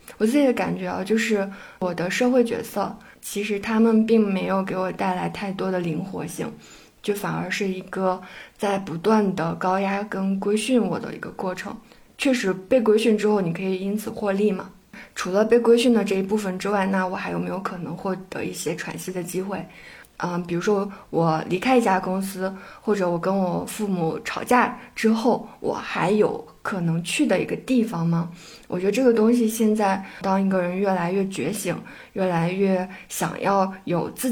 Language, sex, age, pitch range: Chinese, female, 20-39, 185-225 Hz